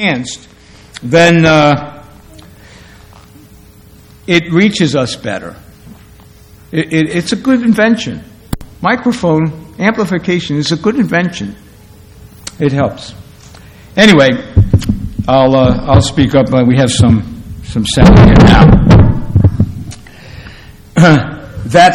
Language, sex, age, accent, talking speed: English, male, 60-79, American, 95 wpm